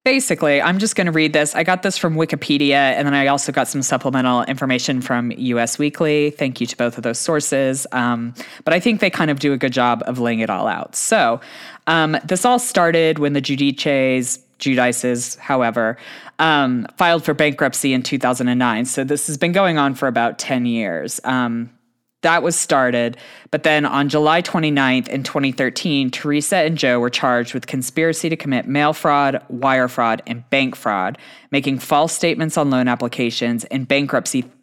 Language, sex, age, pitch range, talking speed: English, female, 20-39, 125-155 Hz, 185 wpm